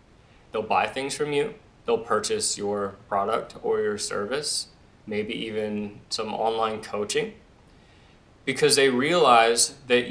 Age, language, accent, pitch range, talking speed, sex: 20-39, English, American, 115-160 Hz, 125 wpm, male